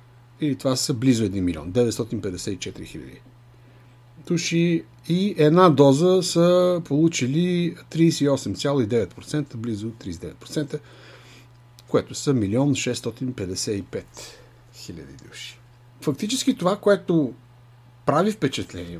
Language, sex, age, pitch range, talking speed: Bulgarian, male, 60-79, 120-165 Hz, 85 wpm